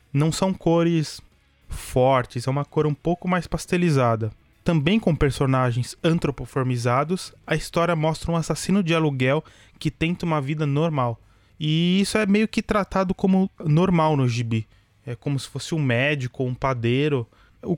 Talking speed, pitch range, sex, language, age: 160 wpm, 135-175 Hz, male, Portuguese, 20-39